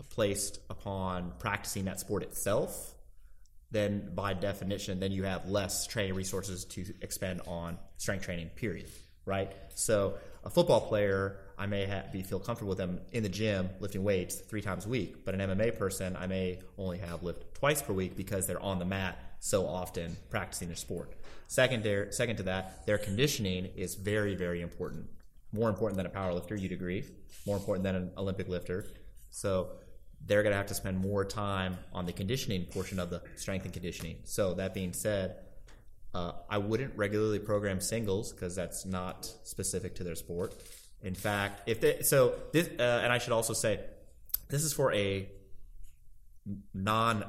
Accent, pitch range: American, 95-110 Hz